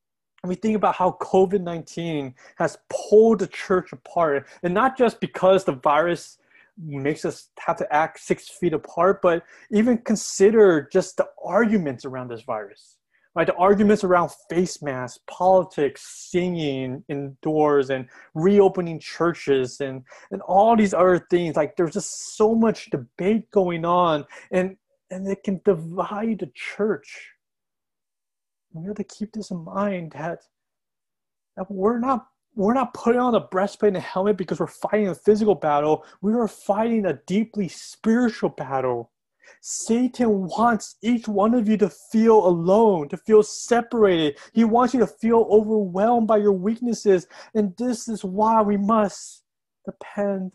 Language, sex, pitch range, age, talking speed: English, male, 165-215 Hz, 30-49, 150 wpm